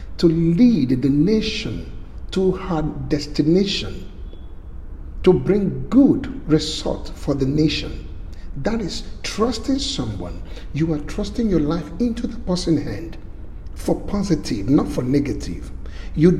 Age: 50-69